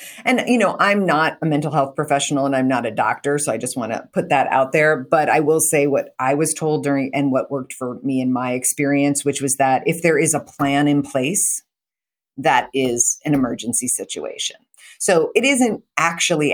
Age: 40-59